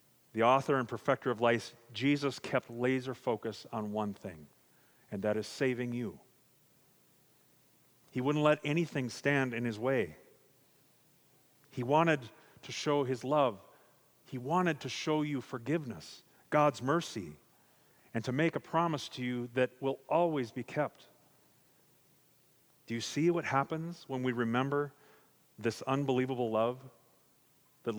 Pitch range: 125-150 Hz